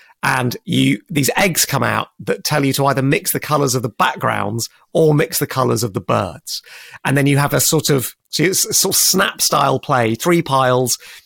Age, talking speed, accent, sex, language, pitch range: 30-49, 220 wpm, British, male, English, 120-145 Hz